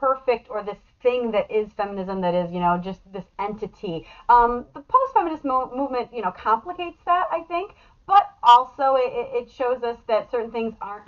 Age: 30-49